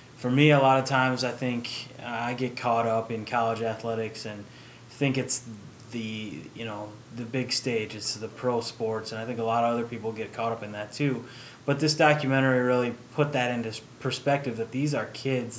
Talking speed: 210 wpm